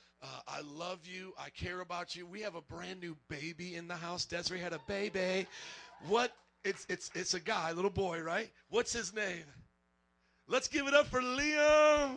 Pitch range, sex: 160-210 Hz, male